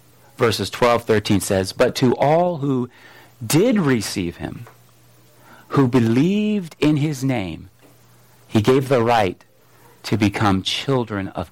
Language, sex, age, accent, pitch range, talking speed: English, male, 40-59, American, 110-145 Hz, 125 wpm